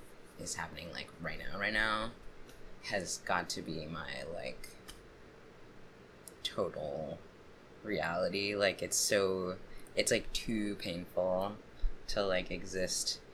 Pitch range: 85-105 Hz